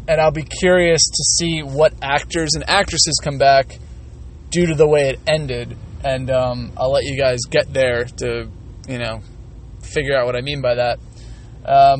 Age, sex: 20-39, male